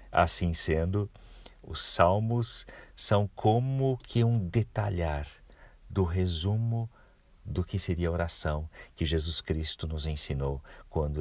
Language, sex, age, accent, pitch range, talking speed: Portuguese, male, 50-69, Brazilian, 75-100 Hz, 120 wpm